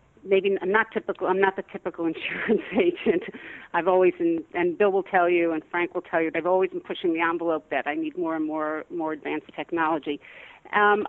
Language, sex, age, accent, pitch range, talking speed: English, female, 50-69, American, 170-225 Hz, 215 wpm